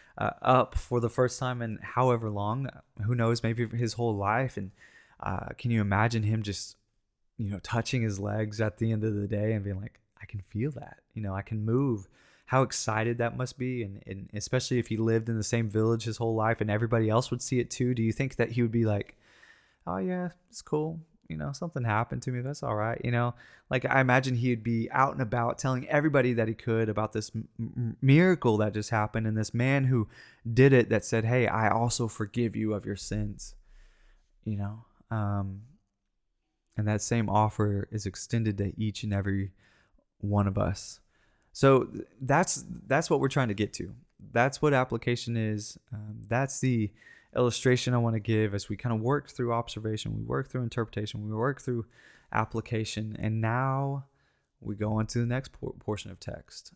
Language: English